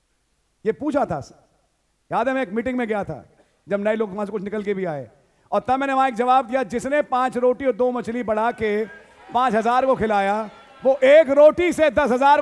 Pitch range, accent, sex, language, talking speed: 230-300 Hz, Indian, male, English, 210 wpm